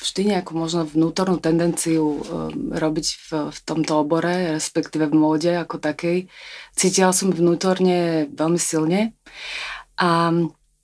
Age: 30-49